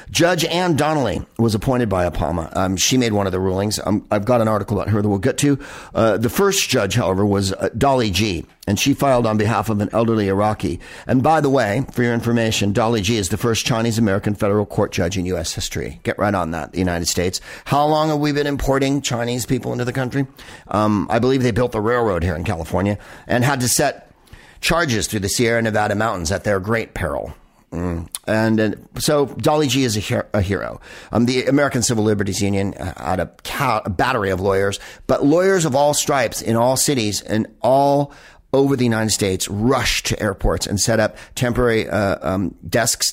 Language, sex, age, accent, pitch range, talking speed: English, male, 50-69, American, 100-130 Hz, 205 wpm